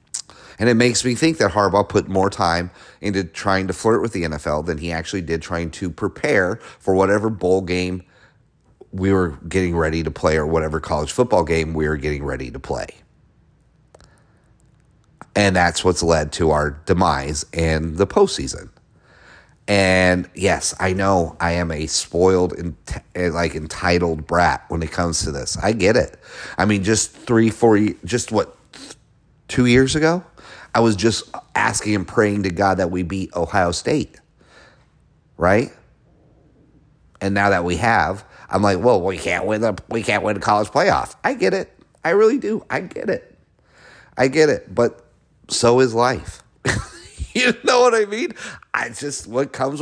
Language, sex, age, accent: English, male, 30-49, American